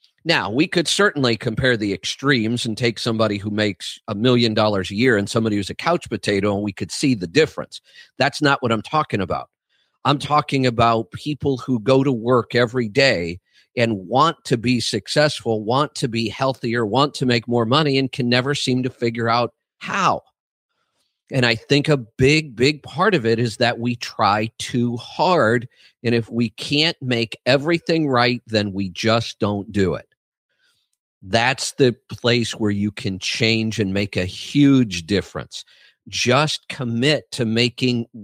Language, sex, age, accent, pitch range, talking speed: English, male, 50-69, American, 115-140 Hz, 175 wpm